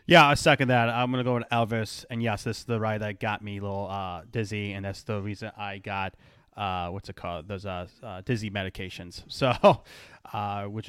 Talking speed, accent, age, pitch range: 225 wpm, American, 30-49, 105-125 Hz